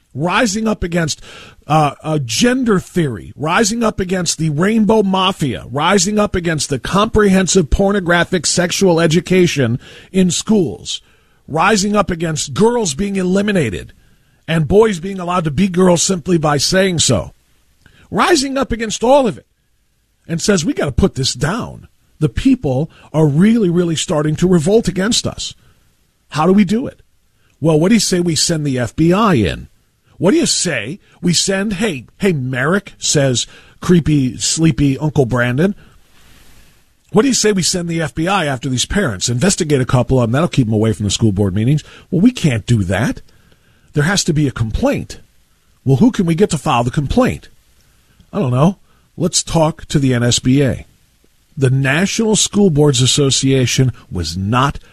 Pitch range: 130-190 Hz